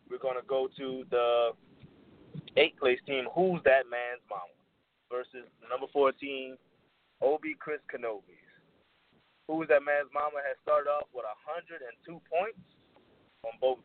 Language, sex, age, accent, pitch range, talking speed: English, male, 30-49, American, 130-165 Hz, 140 wpm